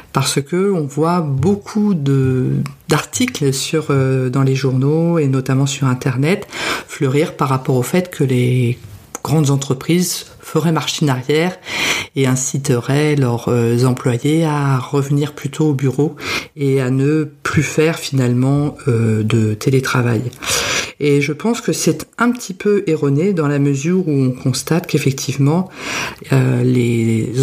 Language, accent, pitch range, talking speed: French, French, 130-155 Hz, 140 wpm